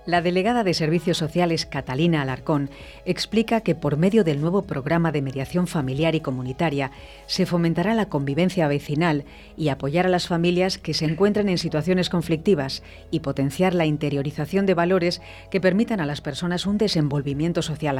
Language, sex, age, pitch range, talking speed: Spanish, female, 40-59, 150-185 Hz, 165 wpm